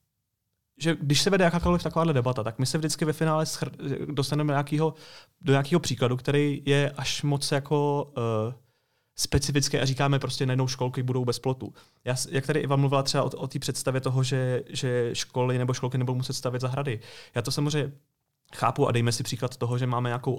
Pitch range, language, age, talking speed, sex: 125-155 Hz, Czech, 30-49, 195 wpm, male